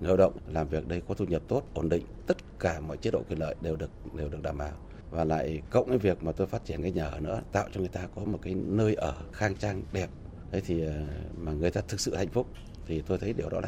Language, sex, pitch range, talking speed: Vietnamese, male, 85-110 Hz, 280 wpm